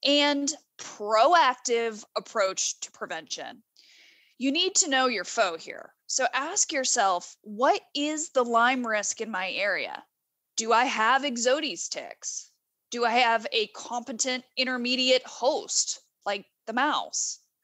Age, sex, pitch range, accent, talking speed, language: 20-39, female, 200-275 Hz, American, 130 wpm, English